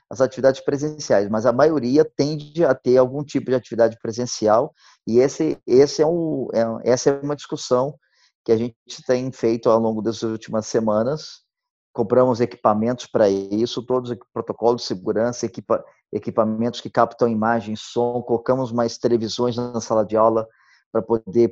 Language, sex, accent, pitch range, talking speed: Portuguese, male, Brazilian, 115-140 Hz, 140 wpm